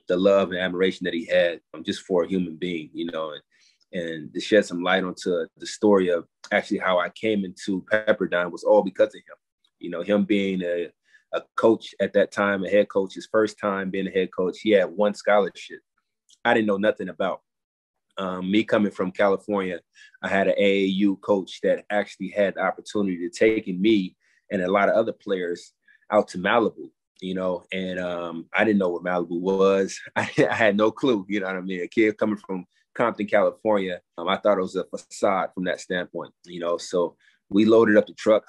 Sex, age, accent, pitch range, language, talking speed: male, 20-39, American, 95-105 Hz, English, 210 wpm